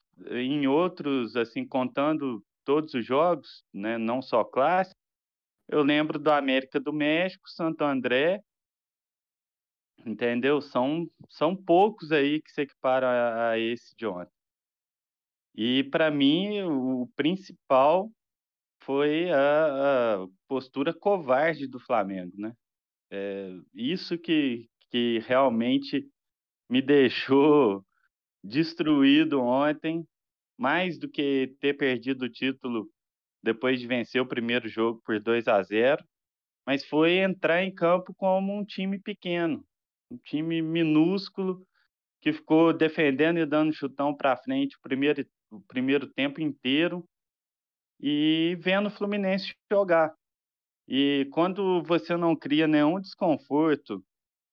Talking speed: 120 wpm